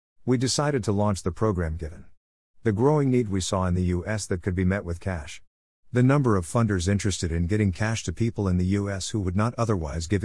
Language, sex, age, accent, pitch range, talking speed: English, male, 50-69, American, 90-115 Hz, 230 wpm